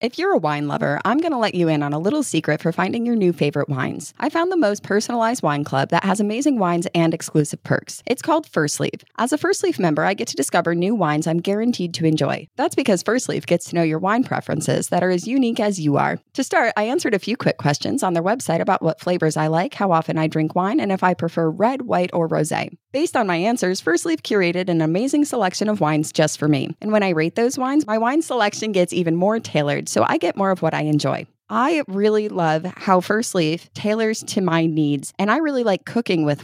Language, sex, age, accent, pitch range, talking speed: English, female, 20-39, American, 160-225 Hz, 250 wpm